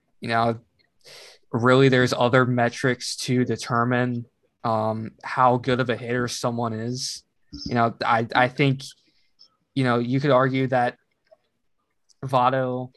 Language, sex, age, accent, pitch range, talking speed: English, male, 20-39, American, 120-135 Hz, 130 wpm